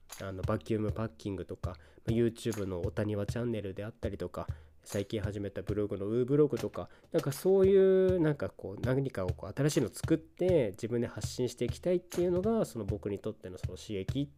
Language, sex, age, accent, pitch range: Japanese, male, 20-39, native, 100-125 Hz